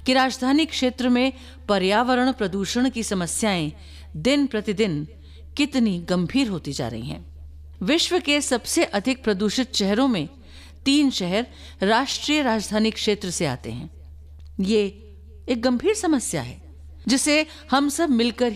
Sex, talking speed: female, 130 wpm